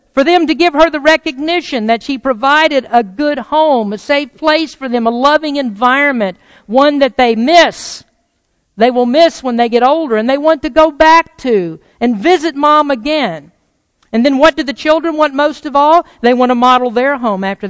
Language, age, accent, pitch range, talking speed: English, 50-69, American, 200-270 Hz, 205 wpm